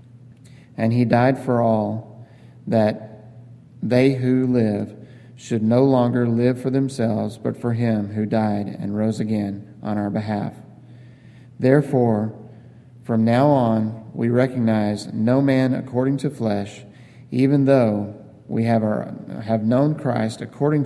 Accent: American